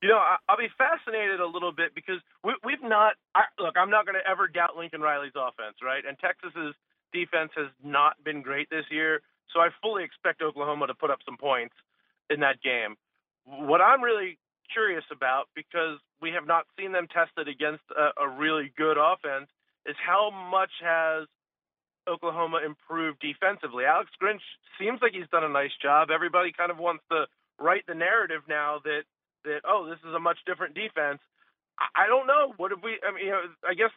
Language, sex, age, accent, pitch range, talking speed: English, male, 30-49, American, 155-190 Hz, 190 wpm